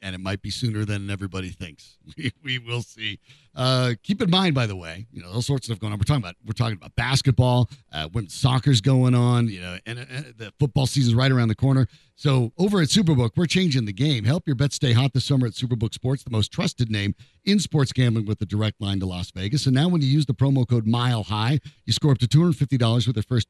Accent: American